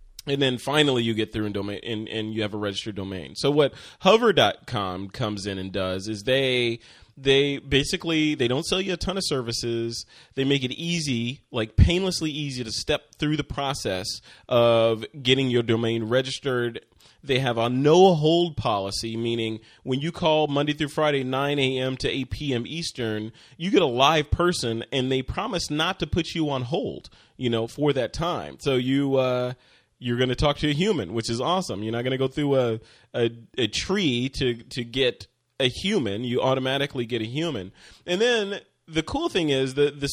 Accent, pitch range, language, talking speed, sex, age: American, 115-155 Hz, English, 195 wpm, male, 30-49